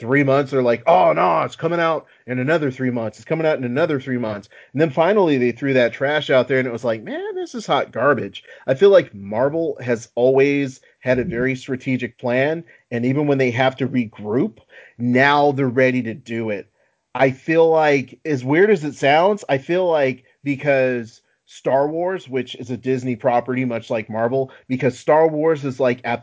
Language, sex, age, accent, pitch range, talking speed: English, male, 30-49, American, 120-155 Hz, 205 wpm